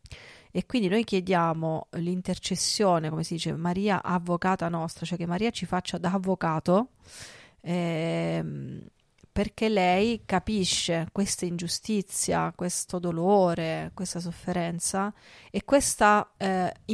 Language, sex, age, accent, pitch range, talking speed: Italian, female, 30-49, native, 170-200 Hz, 110 wpm